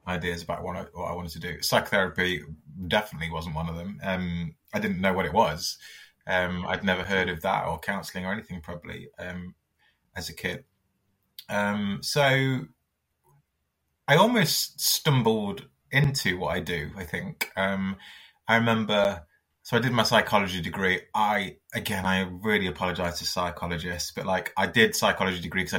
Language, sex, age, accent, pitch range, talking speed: English, male, 20-39, British, 85-105 Hz, 165 wpm